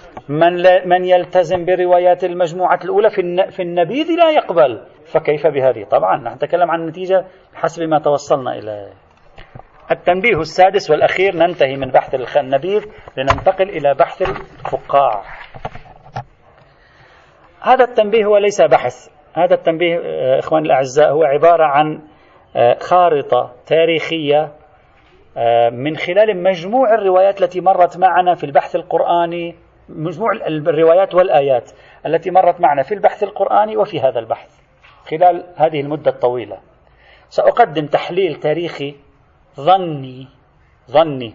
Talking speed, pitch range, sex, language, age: 110 wpm, 150-195 Hz, male, Arabic, 40-59